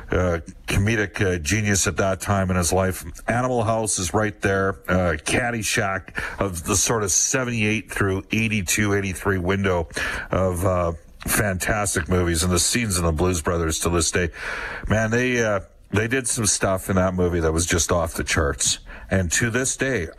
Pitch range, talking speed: 90-120 Hz, 180 wpm